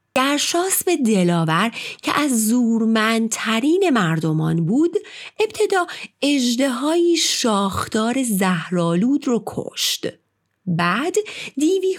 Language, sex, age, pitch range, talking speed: Persian, female, 30-49, 185-285 Hz, 95 wpm